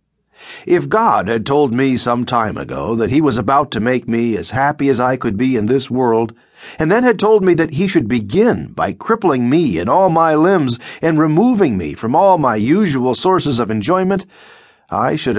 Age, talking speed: 40-59, 205 wpm